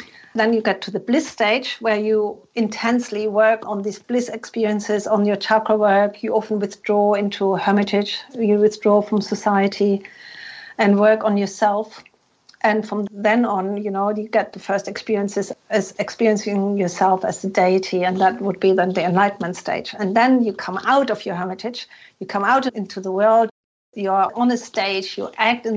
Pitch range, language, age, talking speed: 200-220 Hz, English, 50-69, 185 wpm